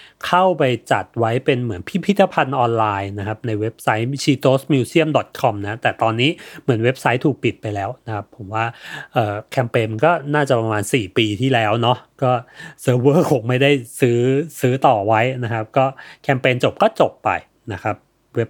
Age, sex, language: 30-49, male, Thai